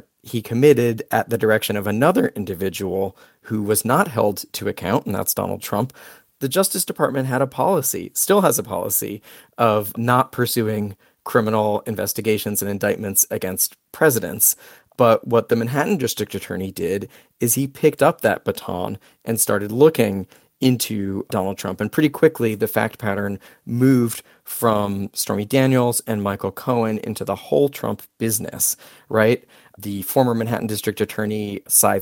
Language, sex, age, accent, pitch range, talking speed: English, male, 40-59, American, 105-125 Hz, 150 wpm